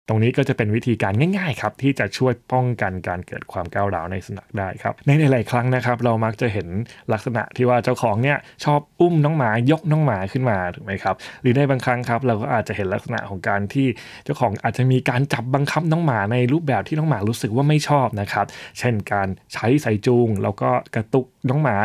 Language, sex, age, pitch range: Thai, male, 20-39, 105-140 Hz